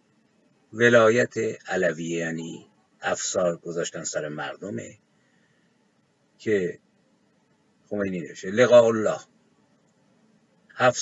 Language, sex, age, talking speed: Persian, male, 50-69, 70 wpm